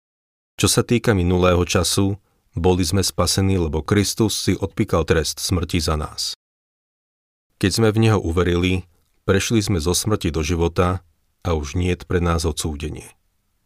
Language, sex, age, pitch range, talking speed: Slovak, male, 40-59, 85-100 Hz, 150 wpm